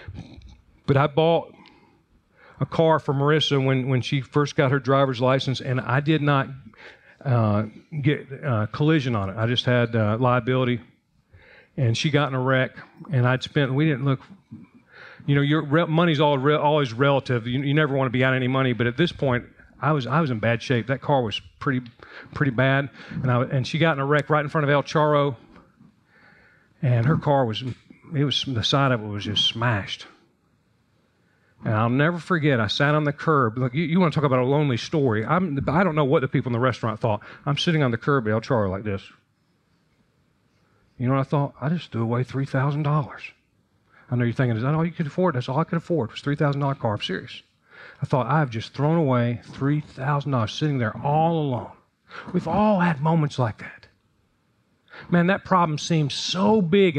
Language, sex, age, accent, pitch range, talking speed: English, male, 40-59, American, 125-155 Hz, 210 wpm